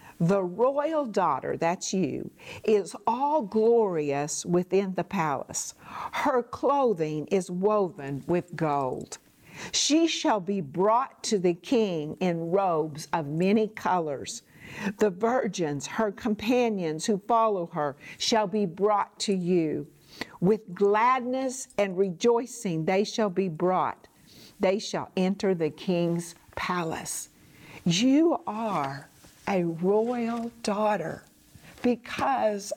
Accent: American